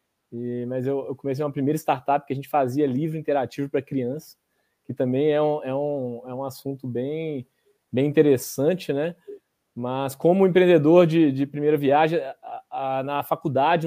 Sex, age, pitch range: male, 20-39, 135-160 Hz